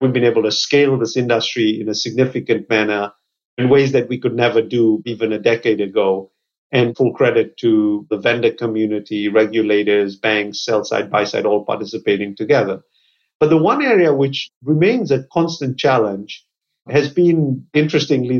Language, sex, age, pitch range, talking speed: English, male, 50-69, 115-140 Hz, 165 wpm